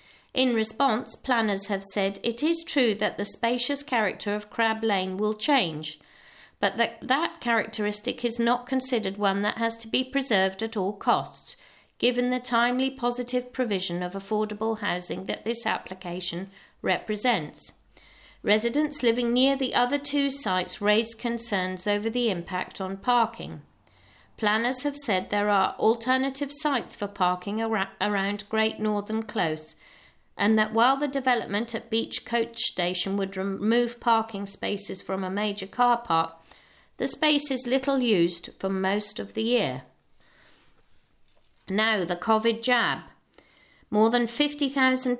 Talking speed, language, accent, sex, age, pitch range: 140 wpm, English, British, female, 40-59, 190-245 Hz